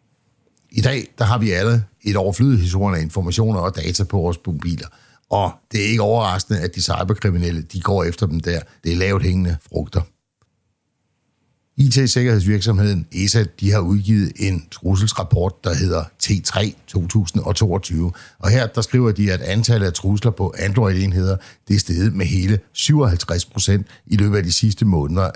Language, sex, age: Danish, male, 60-79